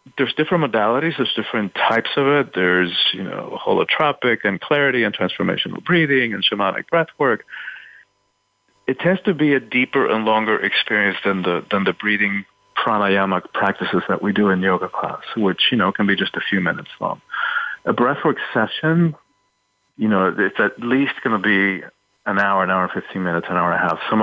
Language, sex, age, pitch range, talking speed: English, male, 40-59, 100-125 Hz, 185 wpm